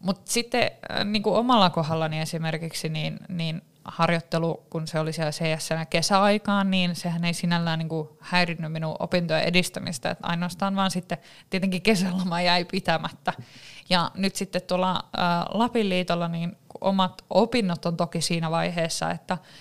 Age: 20-39